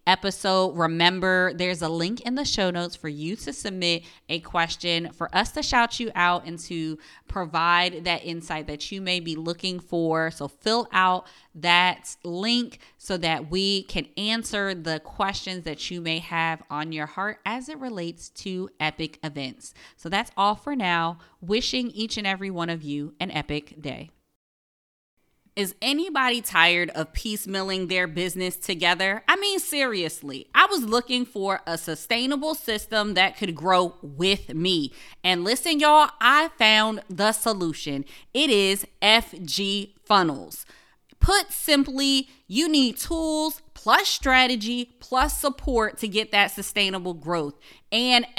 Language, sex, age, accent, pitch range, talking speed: English, female, 20-39, American, 170-230 Hz, 150 wpm